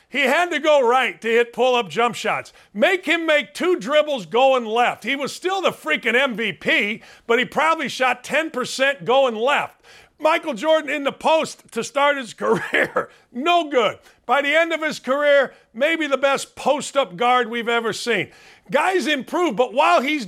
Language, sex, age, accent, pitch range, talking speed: English, male, 50-69, American, 245-325 Hz, 180 wpm